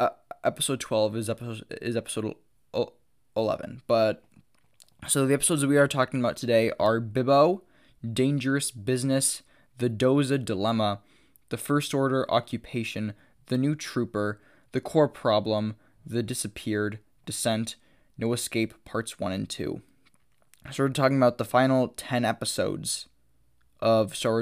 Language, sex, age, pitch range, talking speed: English, male, 10-29, 115-135 Hz, 135 wpm